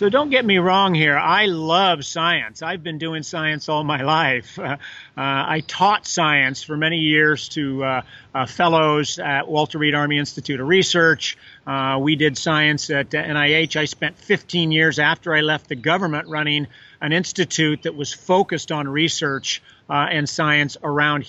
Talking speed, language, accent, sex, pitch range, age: 175 wpm, English, American, male, 150-180 Hz, 40-59